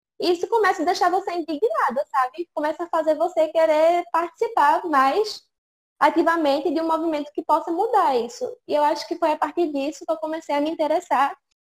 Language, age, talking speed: Portuguese, 10-29, 185 wpm